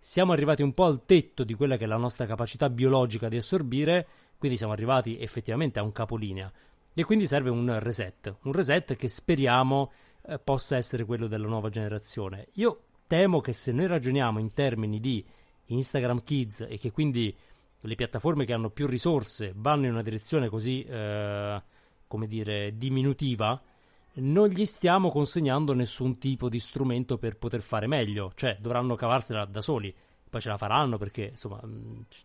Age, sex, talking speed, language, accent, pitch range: 30-49, male, 170 wpm, Italian, native, 110-140 Hz